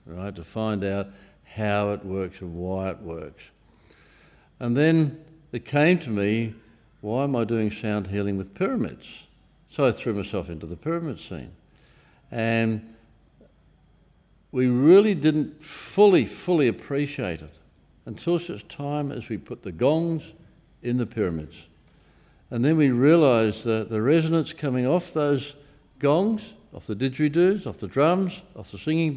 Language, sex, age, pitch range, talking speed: English, male, 60-79, 105-140 Hz, 150 wpm